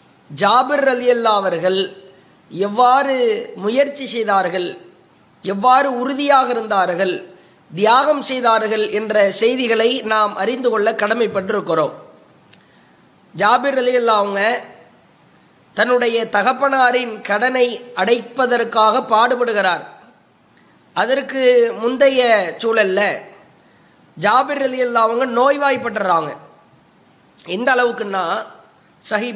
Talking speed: 55 wpm